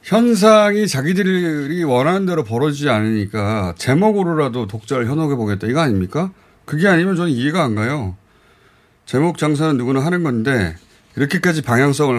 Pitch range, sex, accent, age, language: 100-155 Hz, male, native, 30-49, Korean